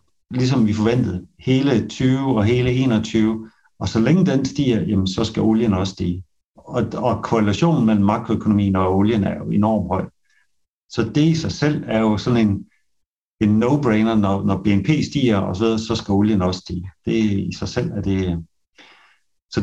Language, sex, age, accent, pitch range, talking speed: Danish, male, 60-79, native, 100-125 Hz, 180 wpm